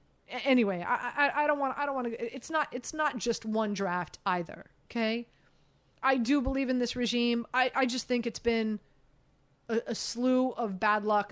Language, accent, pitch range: English, American, 195-240 Hz